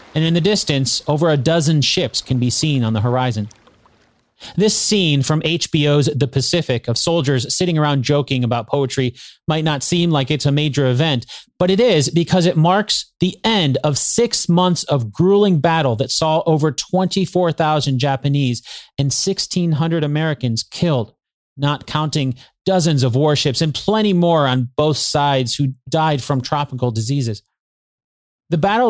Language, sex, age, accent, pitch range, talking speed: English, male, 30-49, American, 130-170 Hz, 160 wpm